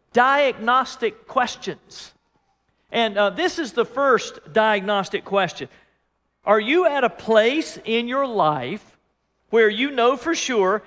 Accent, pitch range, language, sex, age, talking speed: American, 195-270 Hz, English, male, 50-69, 125 wpm